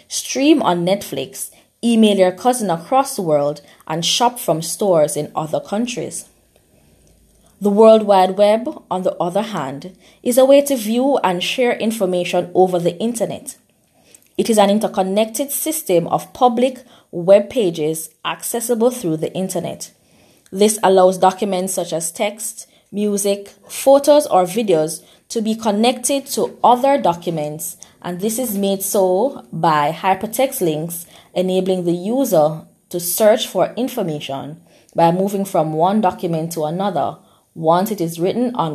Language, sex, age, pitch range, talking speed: English, female, 20-39, 170-230 Hz, 140 wpm